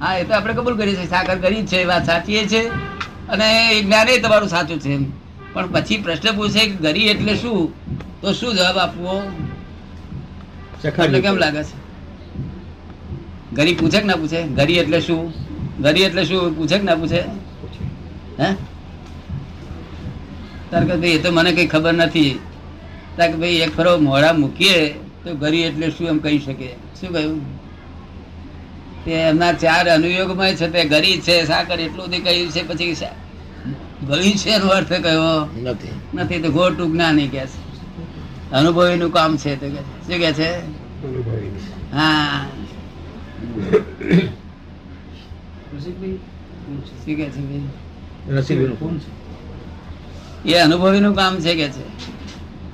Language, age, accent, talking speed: Gujarati, 50-69, native, 80 wpm